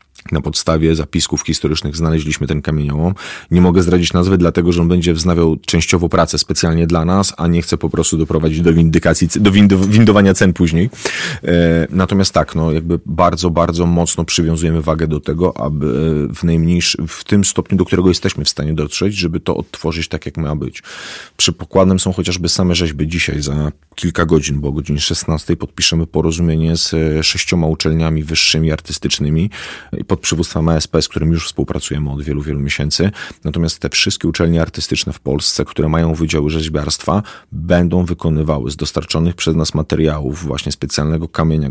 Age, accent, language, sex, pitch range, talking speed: 30-49, native, Polish, male, 75-85 Hz, 170 wpm